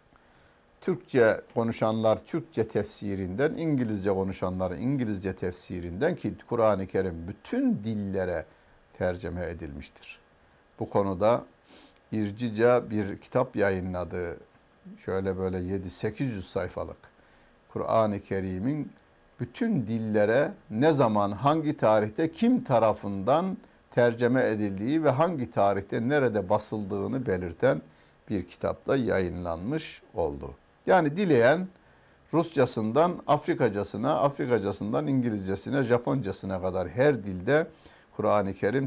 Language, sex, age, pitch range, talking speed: Turkish, male, 60-79, 100-135 Hz, 95 wpm